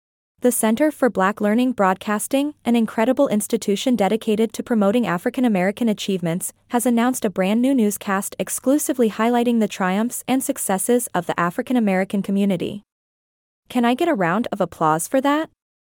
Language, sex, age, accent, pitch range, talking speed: English, female, 20-39, American, 200-250 Hz, 145 wpm